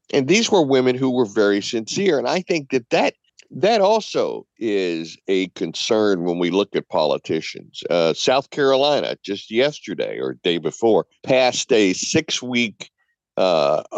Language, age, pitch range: English, 60-79, 115-170 Hz